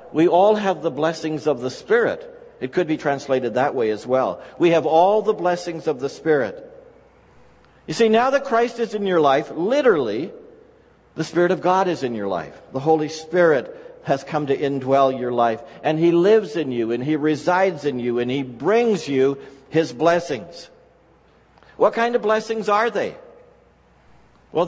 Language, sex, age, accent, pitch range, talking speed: English, male, 60-79, American, 155-225 Hz, 180 wpm